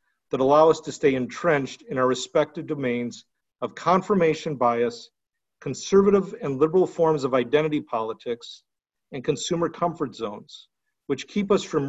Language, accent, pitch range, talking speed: English, American, 130-175 Hz, 140 wpm